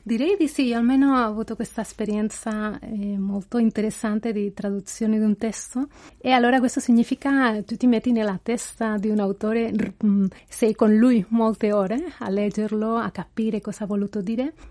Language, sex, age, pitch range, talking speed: Italian, female, 30-49, 205-245 Hz, 180 wpm